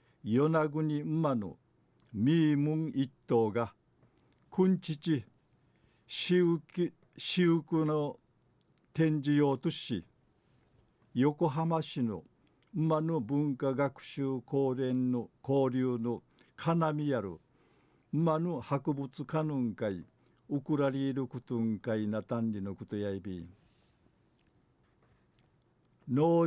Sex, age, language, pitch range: male, 50-69, Japanese, 120-150 Hz